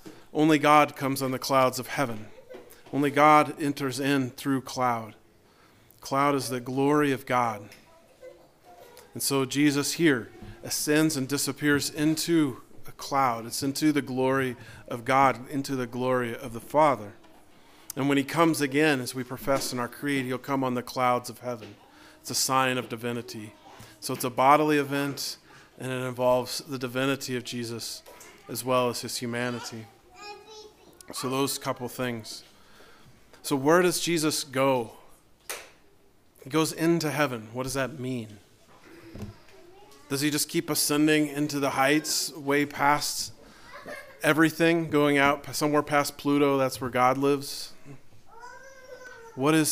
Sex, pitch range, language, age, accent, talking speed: male, 125-150 Hz, English, 40-59, American, 145 wpm